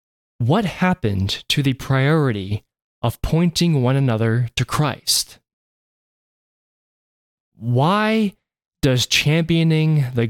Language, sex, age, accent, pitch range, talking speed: English, male, 20-39, American, 115-145 Hz, 85 wpm